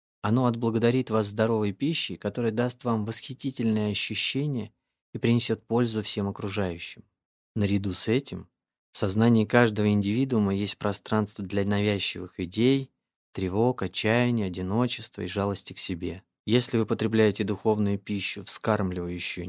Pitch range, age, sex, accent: 95-115 Hz, 20-39, male, native